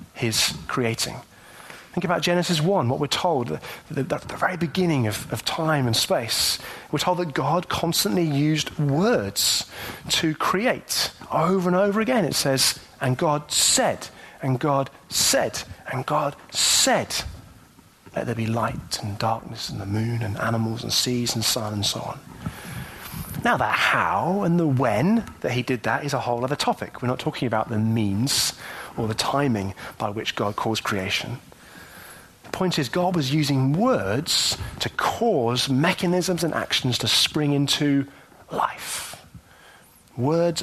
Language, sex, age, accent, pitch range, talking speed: English, male, 30-49, British, 120-175 Hz, 160 wpm